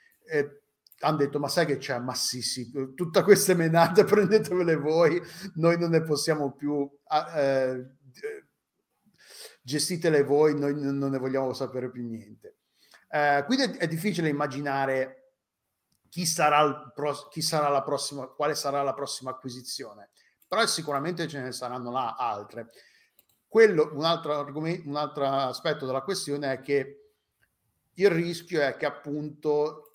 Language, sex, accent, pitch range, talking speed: Italian, male, native, 135-165 Hz, 145 wpm